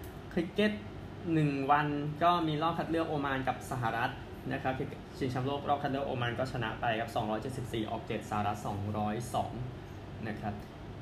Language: Thai